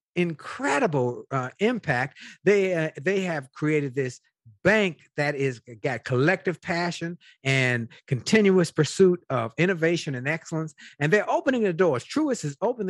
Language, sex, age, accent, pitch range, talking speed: English, male, 50-69, American, 145-215 Hz, 140 wpm